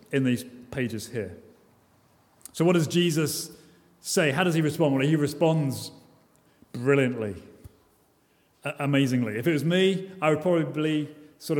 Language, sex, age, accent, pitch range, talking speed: English, male, 30-49, British, 150-185 Hz, 135 wpm